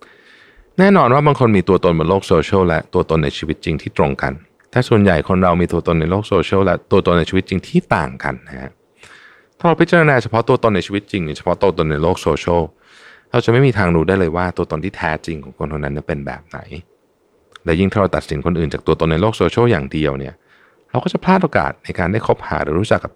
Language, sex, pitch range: Thai, male, 80-110 Hz